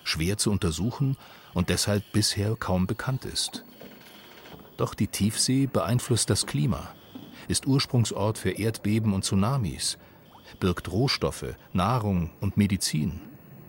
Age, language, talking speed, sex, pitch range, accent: 40-59, German, 115 wpm, male, 90-120 Hz, German